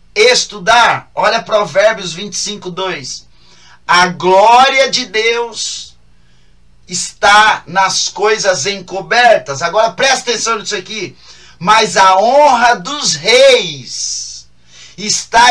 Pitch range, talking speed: 170-235 Hz, 95 wpm